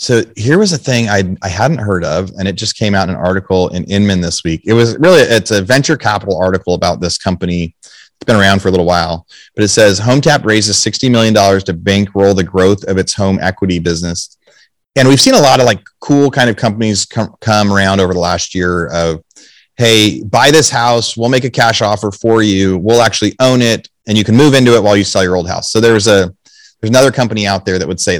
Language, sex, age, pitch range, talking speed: English, male, 30-49, 95-120 Hz, 240 wpm